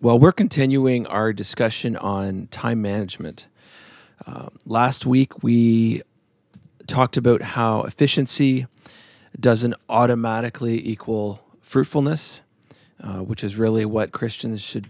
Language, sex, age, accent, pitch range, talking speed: English, male, 40-59, American, 105-125 Hz, 110 wpm